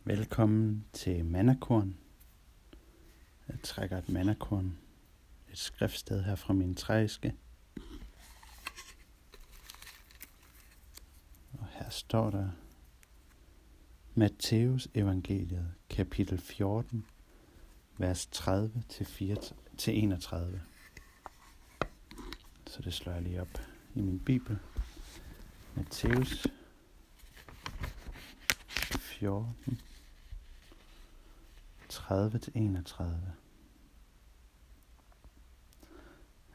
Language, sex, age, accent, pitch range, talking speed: Danish, male, 60-79, native, 85-110 Hz, 60 wpm